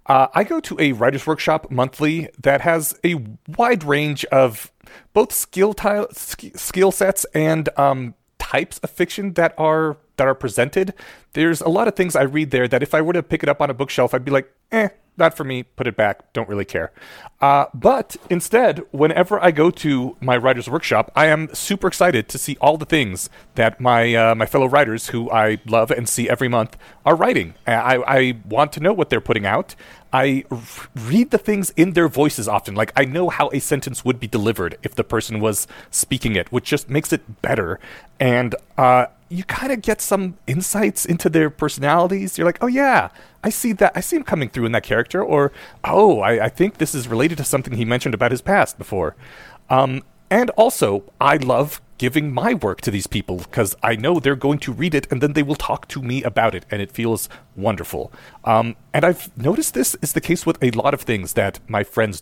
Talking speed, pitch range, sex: 210 wpm, 125-170 Hz, male